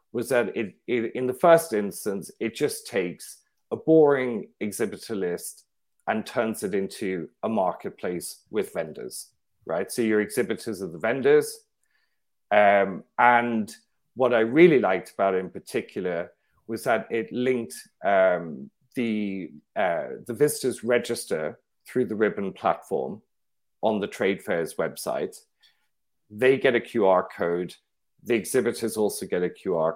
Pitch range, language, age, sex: 105-135 Hz, English, 40-59, male